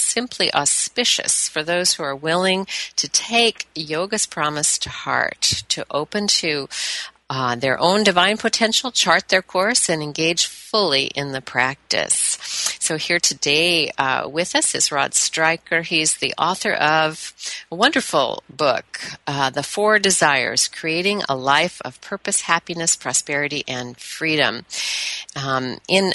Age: 50-69